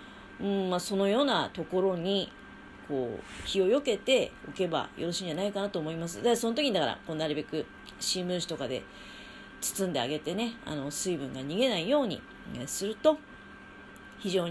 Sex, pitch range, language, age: female, 165-255 Hz, Japanese, 30-49